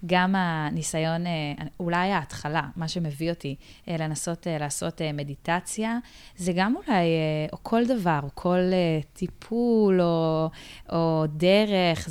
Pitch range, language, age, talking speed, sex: 155-185 Hz, Hebrew, 20-39, 110 wpm, female